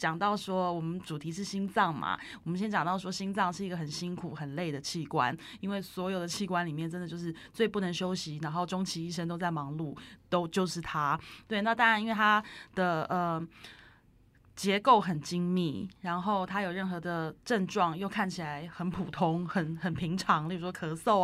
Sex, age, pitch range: female, 20-39, 160-195 Hz